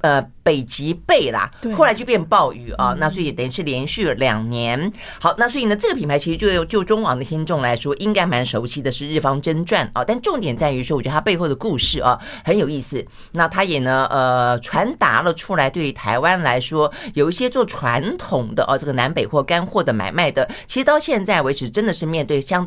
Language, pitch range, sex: Chinese, 135-190 Hz, female